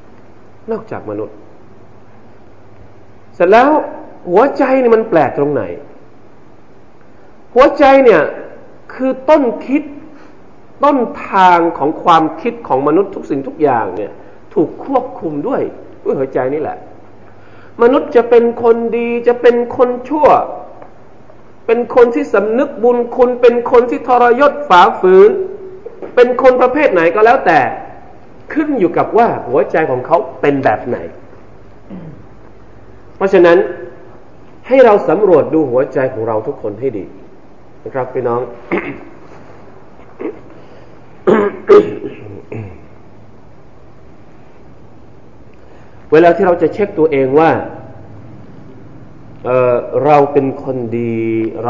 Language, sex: Thai, male